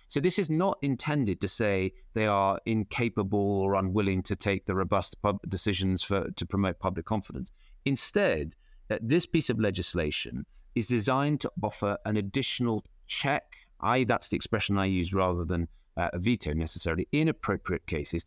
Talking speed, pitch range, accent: 155 wpm, 95-130 Hz, British